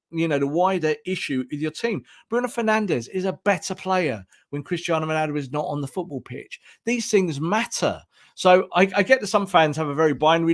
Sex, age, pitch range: male, 40-59, 145-185 Hz